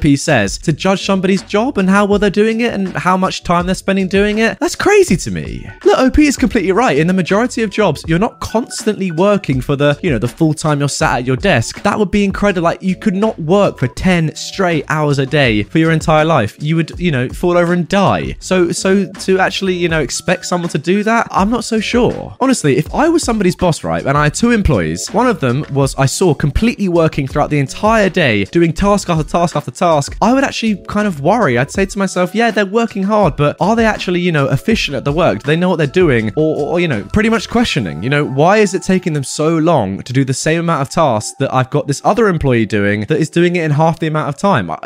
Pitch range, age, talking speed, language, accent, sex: 145-200 Hz, 20-39, 255 wpm, English, British, male